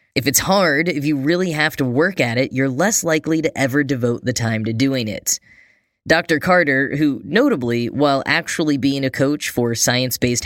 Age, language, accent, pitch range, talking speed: 10-29, English, American, 125-160 Hz, 190 wpm